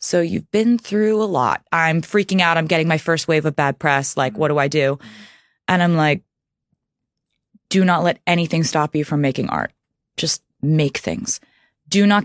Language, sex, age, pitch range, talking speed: English, female, 20-39, 150-185 Hz, 190 wpm